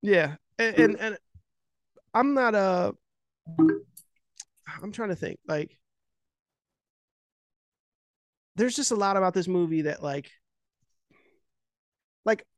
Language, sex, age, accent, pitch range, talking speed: English, male, 20-39, American, 150-195 Hz, 105 wpm